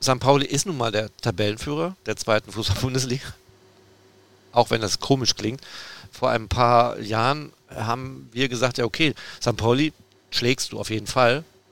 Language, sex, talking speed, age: German, male, 160 wpm, 40-59